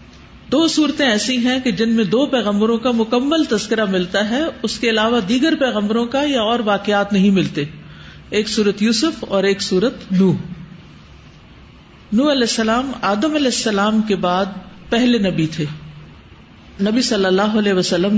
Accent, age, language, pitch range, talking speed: Indian, 50-69, English, 185-245 Hz, 150 wpm